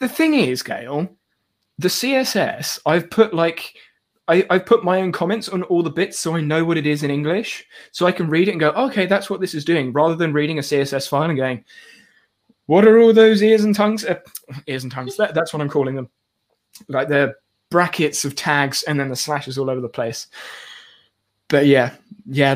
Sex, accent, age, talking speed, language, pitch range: male, British, 20-39, 215 wpm, English, 140-185 Hz